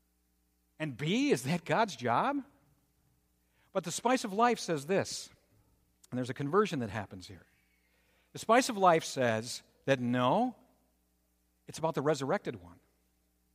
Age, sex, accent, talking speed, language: 50-69, male, American, 140 wpm, English